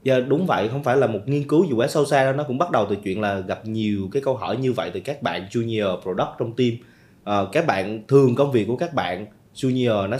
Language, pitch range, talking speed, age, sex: Vietnamese, 100-140 Hz, 270 wpm, 20-39, male